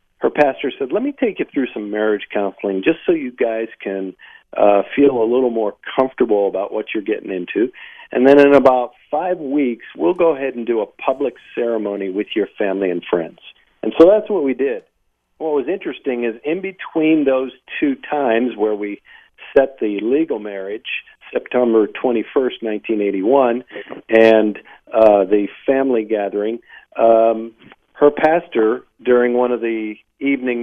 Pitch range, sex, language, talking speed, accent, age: 110-155 Hz, male, English, 165 wpm, American, 50-69